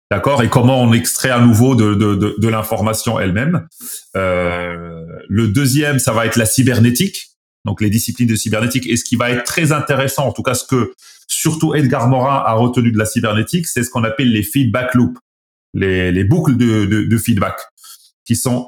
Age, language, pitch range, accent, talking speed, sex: 30-49, French, 110-140 Hz, French, 200 wpm, male